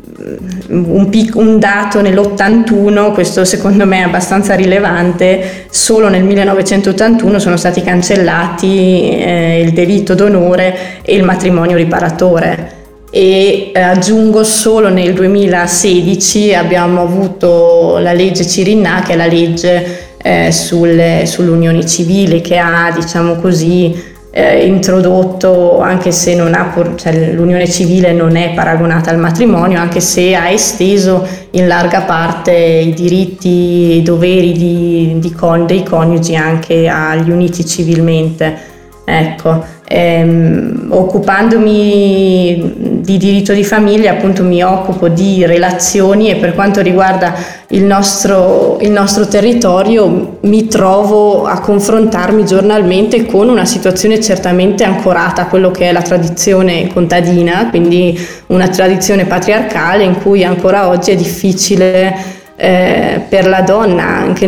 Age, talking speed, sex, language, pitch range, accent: 20-39, 125 wpm, female, Italian, 175-195 Hz, native